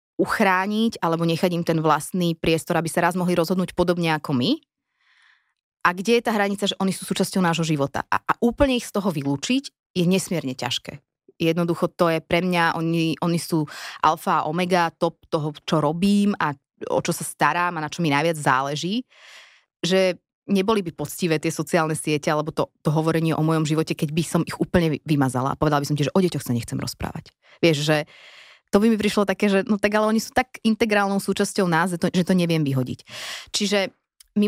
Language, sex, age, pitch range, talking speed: Slovak, female, 20-39, 155-195 Hz, 205 wpm